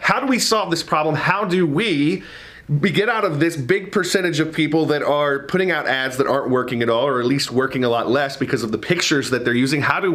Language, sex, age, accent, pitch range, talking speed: English, male, 30-49, American, 125-170 Hz, 255 wpm